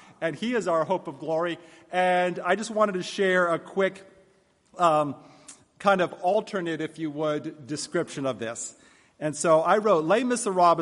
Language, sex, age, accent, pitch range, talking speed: English, male, 40-59, American, 140-190 Hz, 170 wpm